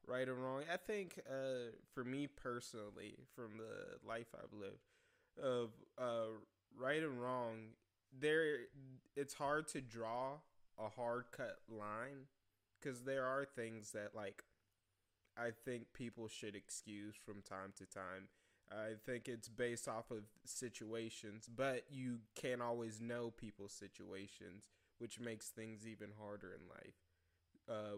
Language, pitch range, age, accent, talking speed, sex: English, 105-125 Hz, 20-39, American, 140 wpm, male